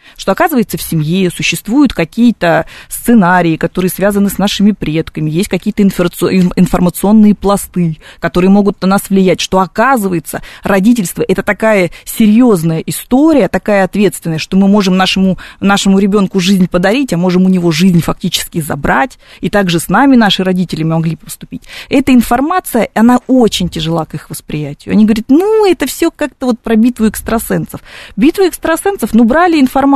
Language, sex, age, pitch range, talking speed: Russian, female, 20-39, 180-235 Hz, 150 wpm